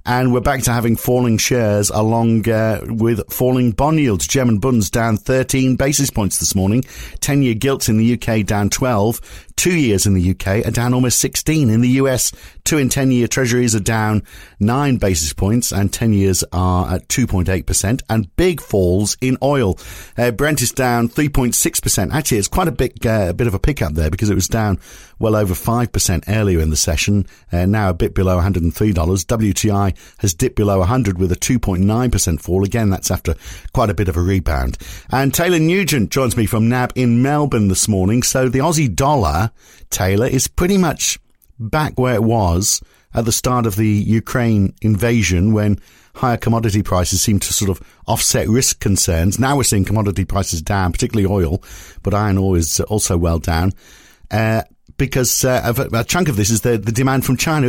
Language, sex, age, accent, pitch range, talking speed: English, male, 50-69, British, 95-125 Hz, 190 wpm